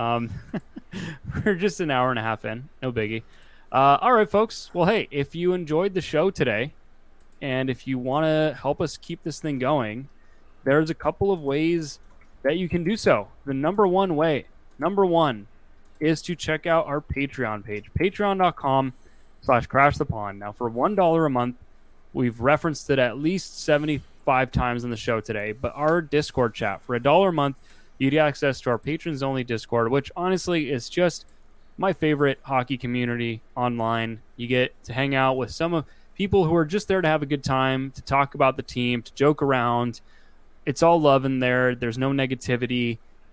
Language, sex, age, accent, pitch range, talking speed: English, male, 20-39, American, 120-155 Hz, 190 wpm